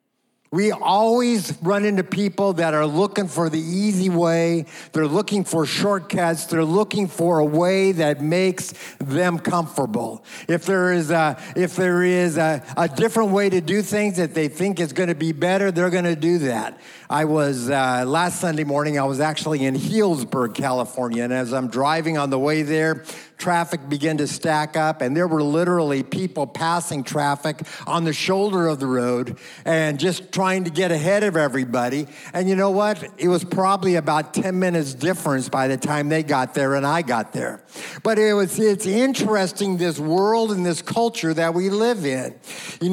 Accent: American